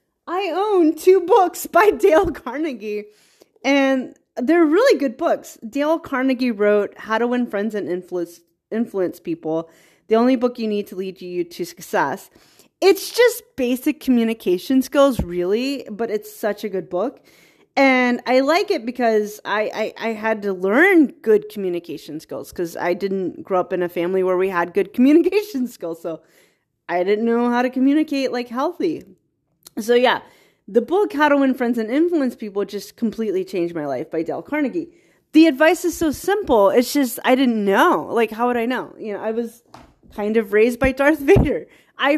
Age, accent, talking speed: 30-49, American, 180 wpm